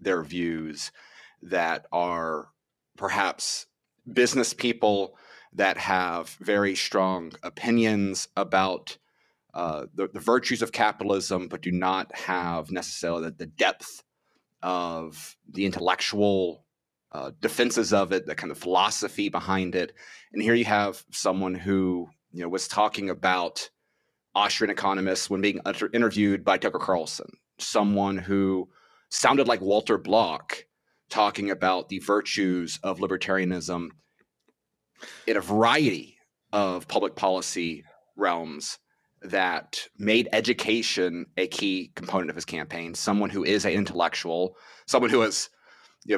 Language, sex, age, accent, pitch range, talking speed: English, male, 30-49, American, 90-105 Hz, 125 wpm